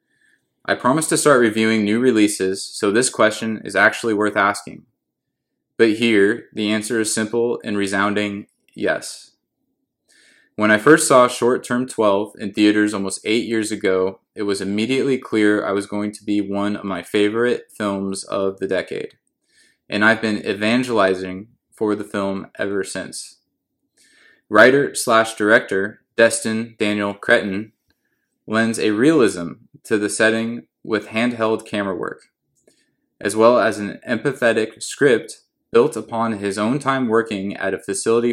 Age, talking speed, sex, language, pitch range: 20-39, 145 wpm, male, English, 100-115 Hz